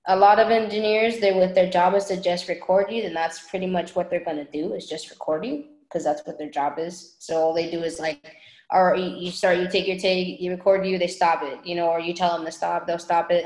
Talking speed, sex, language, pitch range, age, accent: 275 wpm, female, English, 170-205 Hz, 10-29, American